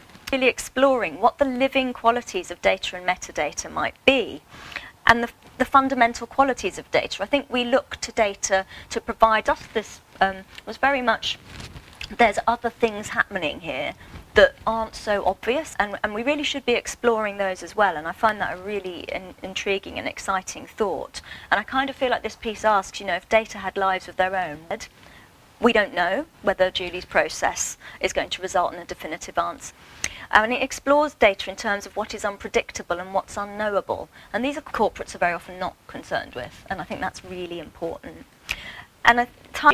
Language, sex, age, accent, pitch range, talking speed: English, female, 30-49, British, 190-245 Hz, 195 wpm